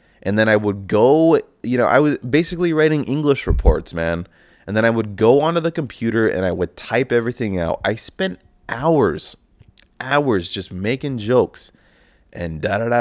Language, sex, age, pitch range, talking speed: English, male, 20-39, 85-105 Hz, 180 wpm